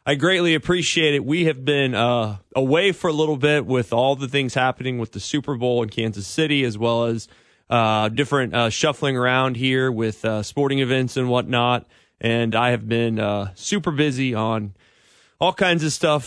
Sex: male